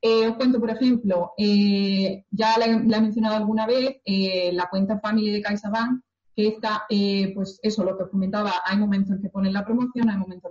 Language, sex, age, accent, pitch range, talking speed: Spanish, female, 30-49, Spanish, 195-230 Hz, 205 wpm